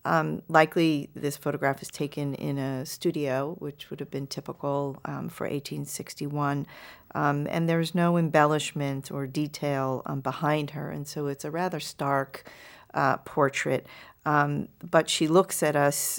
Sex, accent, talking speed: female, American, 150 wpm